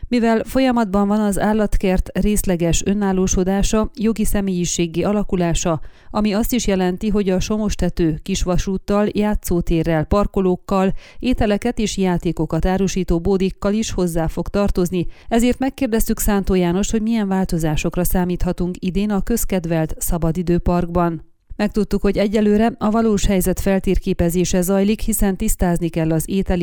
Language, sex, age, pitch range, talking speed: Hungarian, female, 30-49, 175-210 Hz, 120 wpm